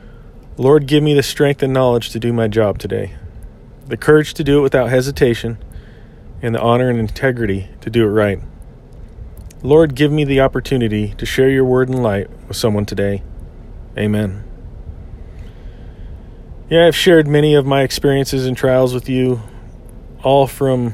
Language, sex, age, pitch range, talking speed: English, male, 40-59, 105-130 Hz, 160 wpm